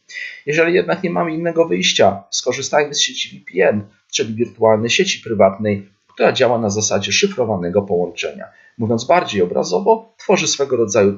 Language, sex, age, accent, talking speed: Polish, male, 40-59, native, 140 wpm